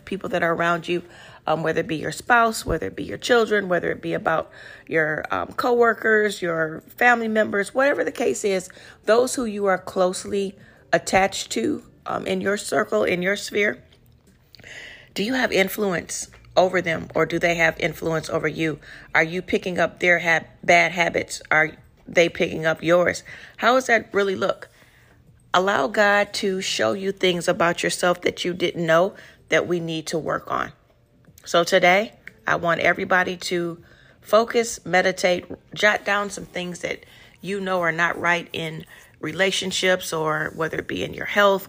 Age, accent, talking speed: 40-59, American, 170 wpm